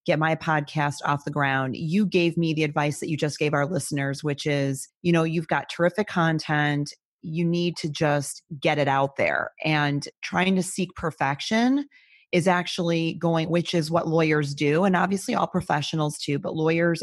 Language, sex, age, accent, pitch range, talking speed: English, female, 30-49, American, 145-170 Hz, 185 wpm